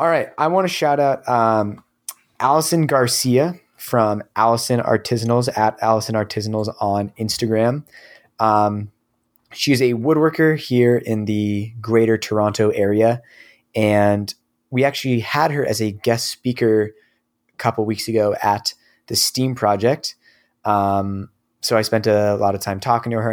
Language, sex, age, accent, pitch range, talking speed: English, male, 20-39, American, 105-120 Hz, 145 wpm